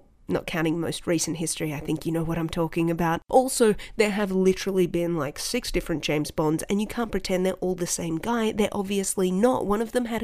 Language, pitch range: English, 175-220 Hz